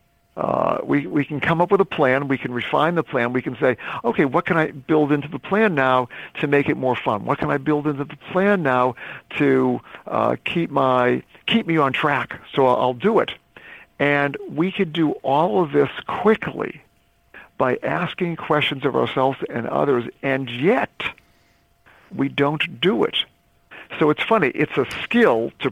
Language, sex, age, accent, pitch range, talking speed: English, male, 50-69, American, 130-160 Hz, 185 wpm